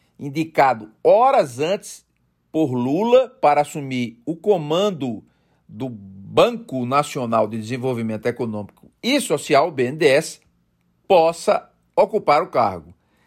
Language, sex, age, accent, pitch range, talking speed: Portuguese, male, 50-69, Brazilian, 140-195 Hz, 100 wpm